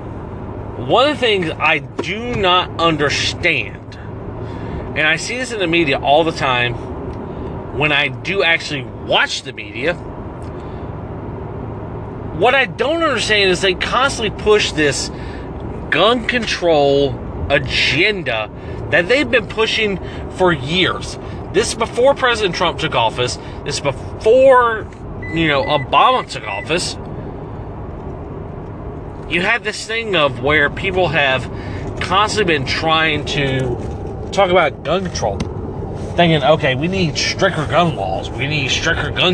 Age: 30-49